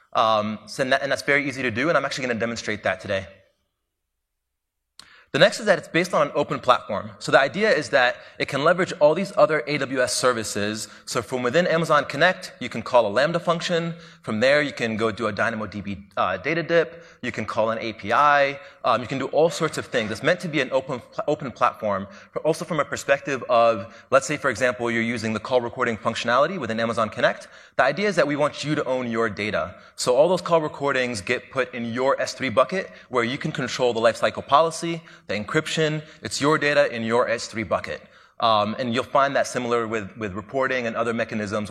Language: English